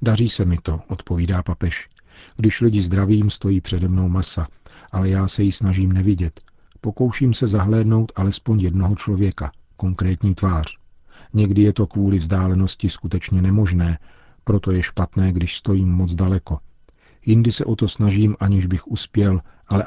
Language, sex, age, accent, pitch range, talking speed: Czech, male, 40-59, native, 90-105 Hz, 150 wpm